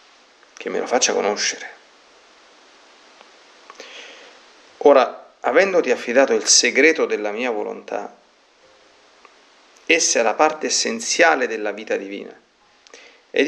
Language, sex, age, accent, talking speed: Italian, male, 40-59, native, 100 wpm